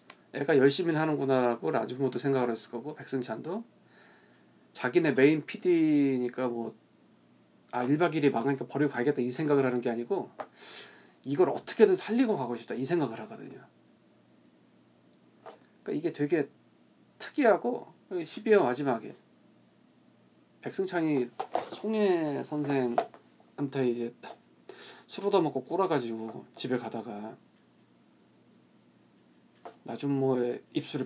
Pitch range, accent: 120-170 Hz, native